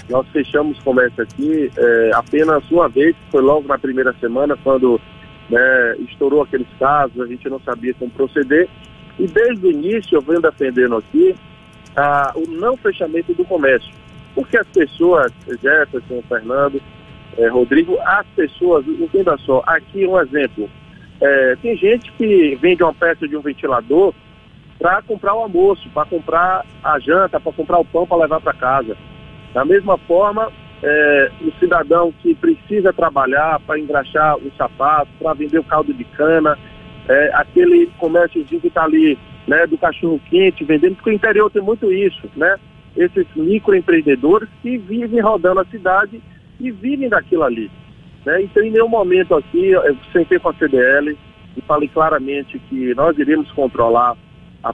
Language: Portuguese